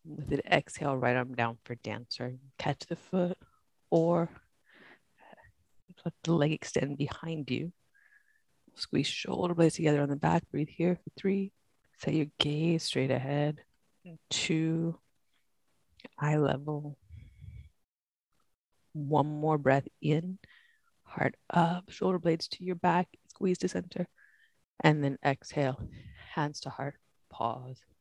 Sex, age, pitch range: female, 30-49, 115-165 Hz